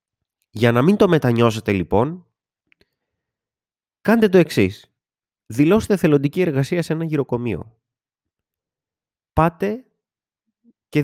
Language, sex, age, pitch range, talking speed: Greek, male, 30-49, 110-155 Hz, 90 wpm